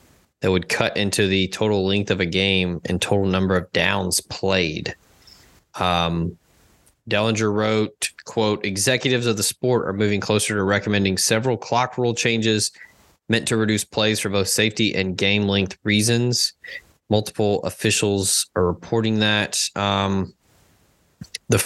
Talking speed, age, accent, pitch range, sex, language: 140 wpm, 20-39, American, 95-115 Hz, male, English